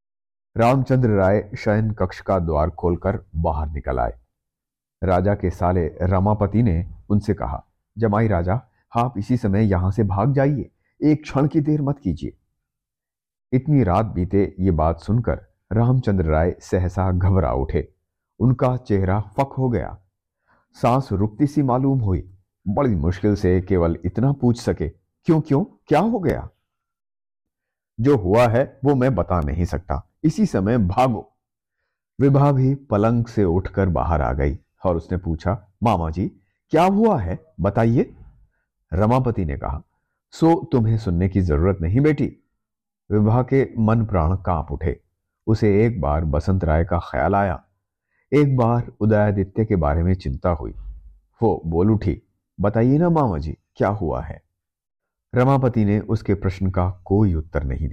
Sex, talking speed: male, 150 wpm